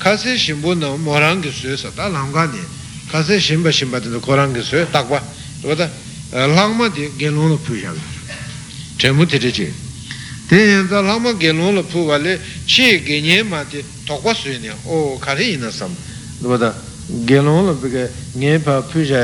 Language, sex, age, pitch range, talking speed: Italian, male, 60-79, 125-160 Hz, 100 wpm